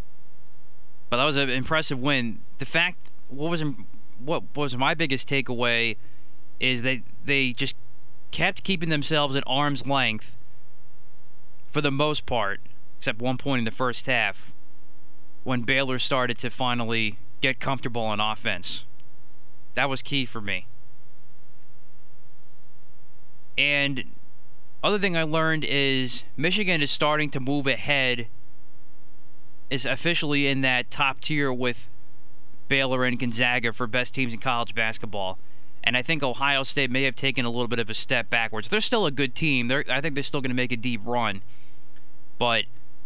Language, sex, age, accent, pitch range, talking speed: English, male, 20-39, American, 115-140 Hz, 155 wpm